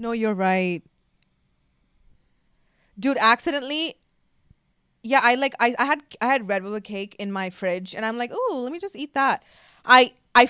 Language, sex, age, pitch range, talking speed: English, female, 20-39, 195-255 Hz, 165 wpm